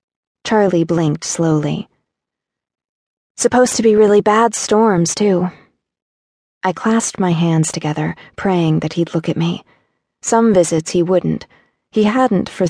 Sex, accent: female, American